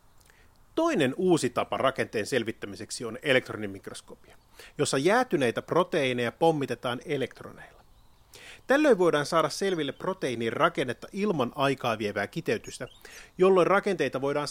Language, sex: Finnish, male